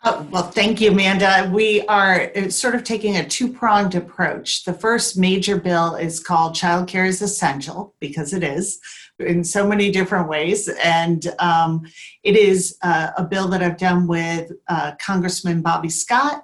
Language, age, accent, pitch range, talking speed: English, 40-59, American, 160-185 Hz, 170 wpm